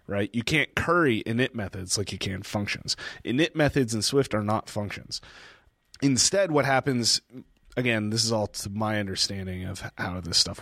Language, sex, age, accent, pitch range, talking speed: English, male, 30-49, American, 105-145 Hz, 180 wpm